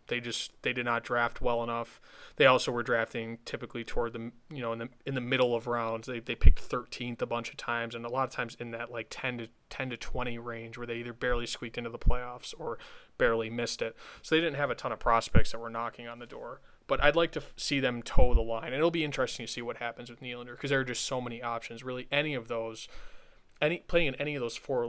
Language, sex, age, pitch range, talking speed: English, male, 20-39, 120-130 Hz, 265 wpm